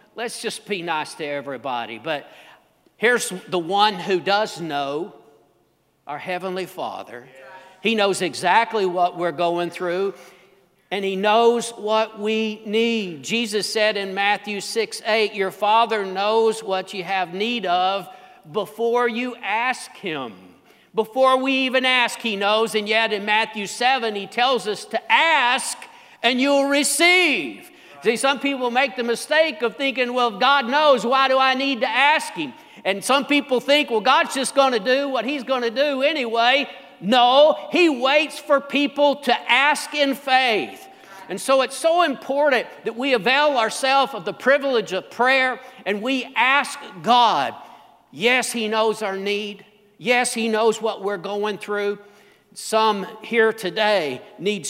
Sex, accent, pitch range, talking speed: male, American, 200-265 Hz, 155 wpm